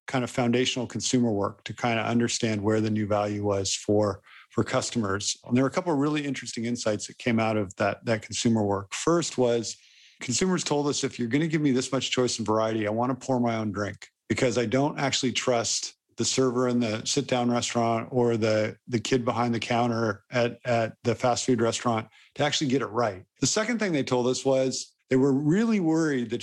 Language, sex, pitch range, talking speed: English, male, 110-135 Hz, 220 wpm